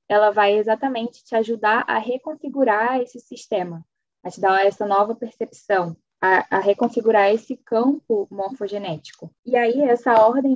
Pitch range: 195-235 Hz